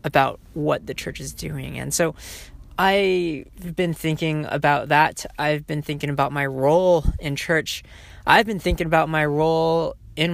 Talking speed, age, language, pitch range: 165 wpm, 20-39, English, 135-170 Hz